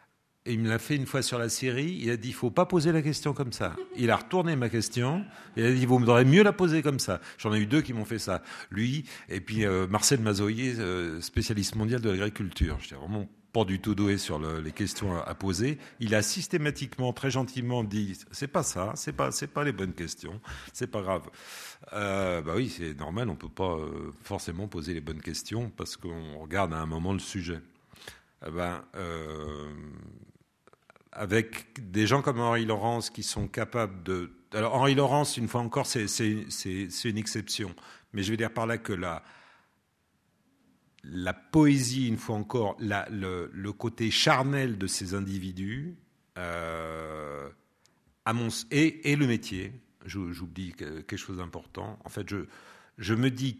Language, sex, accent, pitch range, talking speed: French, male, French, 95-120 Hz, 200 wpm